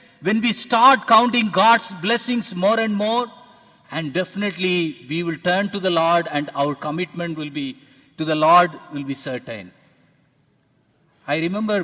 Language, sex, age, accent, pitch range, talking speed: English, male, 50-69, Indian, 135-180 Hz, 150 wpm